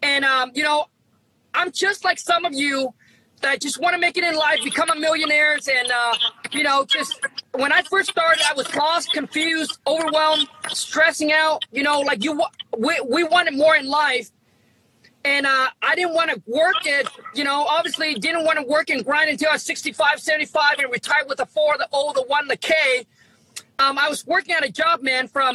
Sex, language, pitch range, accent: male, English, 280-330 Hz, American